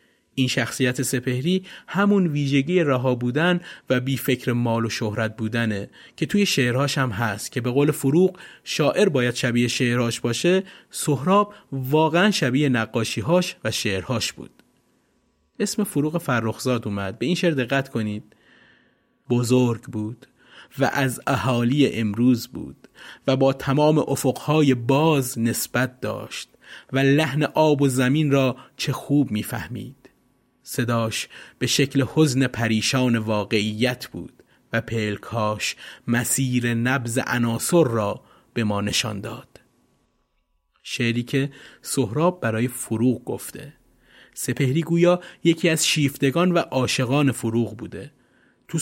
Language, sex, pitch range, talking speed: Persian, male, 120-155 Hz, 120 wpm